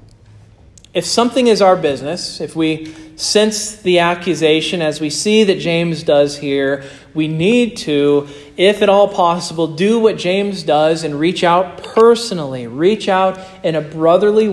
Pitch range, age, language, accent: 155-200 Hz, 40-59, English, American